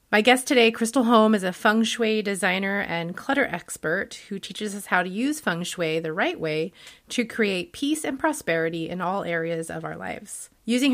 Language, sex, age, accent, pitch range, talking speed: English, female, 30-49, American, 175-235 Hz, 195 wpm